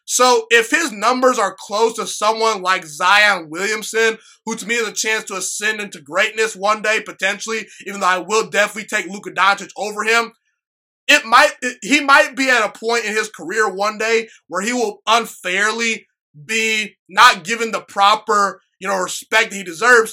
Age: 20-39